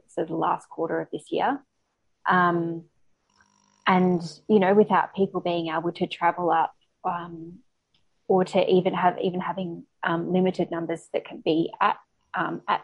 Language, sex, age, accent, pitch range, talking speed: English, female, 20-39, Australian, 170-190 Hz, 155 wpm